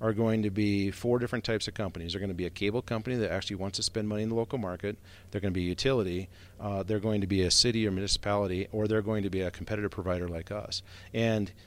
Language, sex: English, male